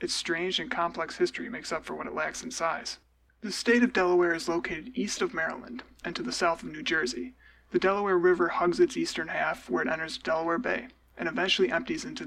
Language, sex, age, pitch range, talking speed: English, male, 20-39, 170-235 Hz, 220 wpm